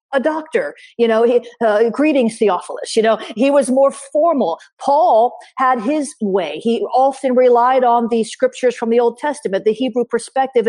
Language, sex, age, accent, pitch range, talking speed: English, female, 40-59, American, 220-285 Hz, 175 wpm